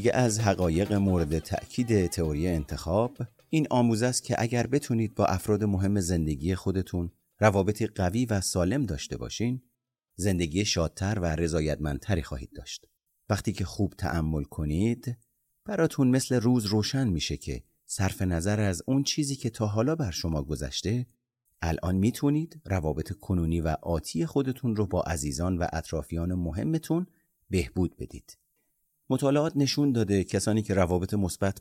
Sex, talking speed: male, 140 wpm